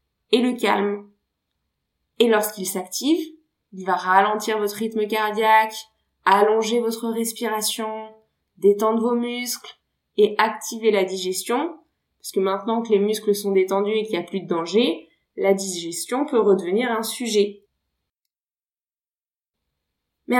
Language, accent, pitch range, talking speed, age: French, French, 200-265 Hz, 130 wpm, 20-39